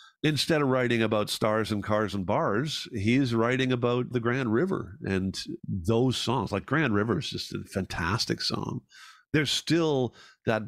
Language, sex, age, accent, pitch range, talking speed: English, male, 50-69, American, 95-115 Hz, 165 wpm